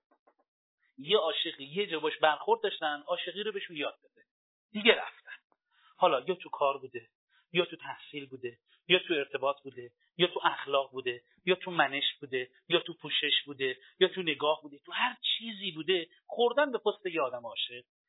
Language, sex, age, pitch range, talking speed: Persian, male, 40-59, 165-255 Hz, 175 wpm